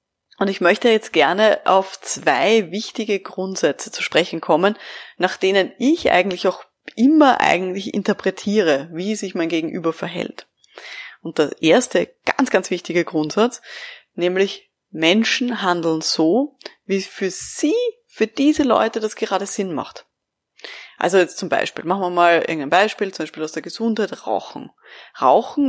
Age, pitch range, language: 20-39, 185-245 Hz, German